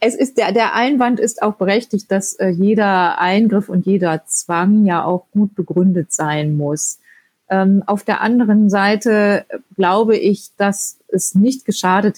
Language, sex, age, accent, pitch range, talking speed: German, female, 30-49, German, 175-200 Hz, 160 wpm